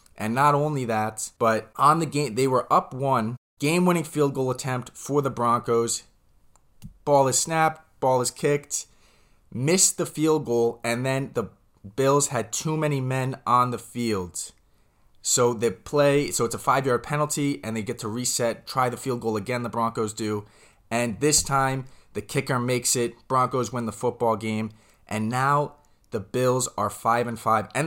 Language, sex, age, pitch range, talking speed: English, male, 20-39, 110-140 Hz, 180 wpm